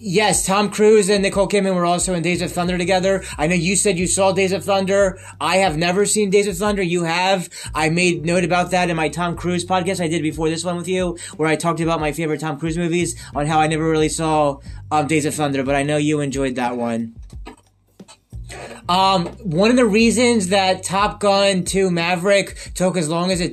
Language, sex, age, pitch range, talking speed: English, male, 20-39, 155-190 Hz, 225 wpm